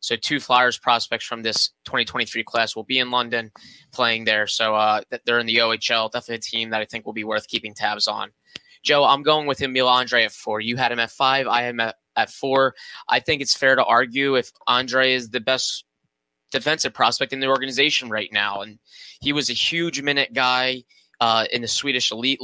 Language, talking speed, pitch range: English, 215 wpm, 115-130 Hz